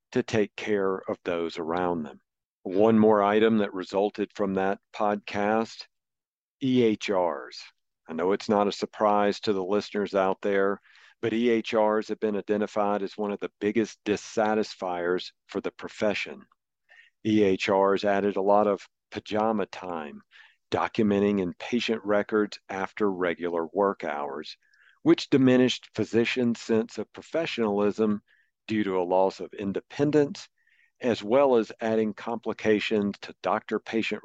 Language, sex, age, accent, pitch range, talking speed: English, male, 50-69, American, 100-115 Hz, 130 wpm